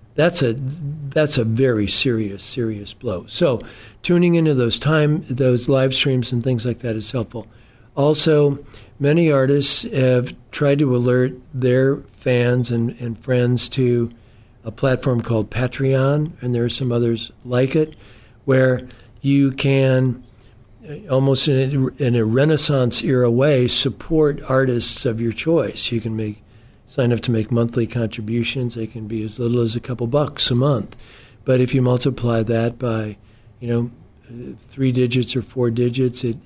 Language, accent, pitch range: English, American, 115-135 Hz